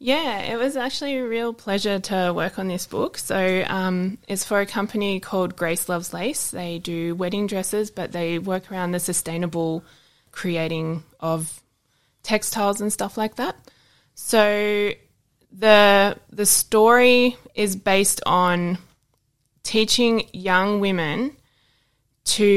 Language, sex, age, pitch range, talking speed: English, female, 20-39, 170-200 Hz, 135 wpm